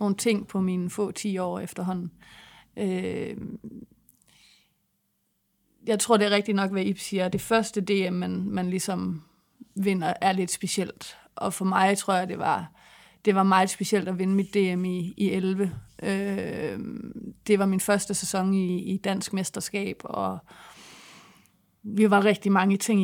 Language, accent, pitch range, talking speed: Danish, native, 185-210 Hz, 160 wpm